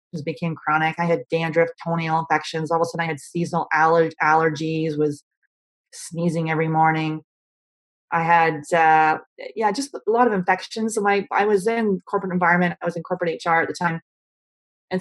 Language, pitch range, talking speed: English, 160-185 Hz, 175 wpm